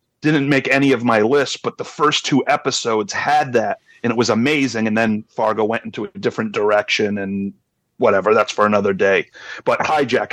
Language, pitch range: English, 120-150 Hz